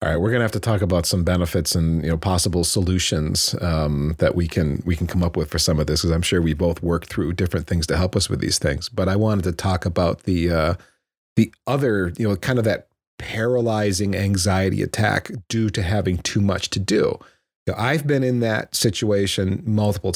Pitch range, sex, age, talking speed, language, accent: 95-115 Hz, male, 40-59, 230 wpm, English, American